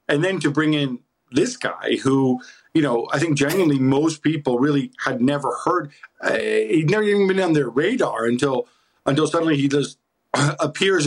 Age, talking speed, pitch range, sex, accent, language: 50-69, 180 wpm, 130-155 Hz, male, American, English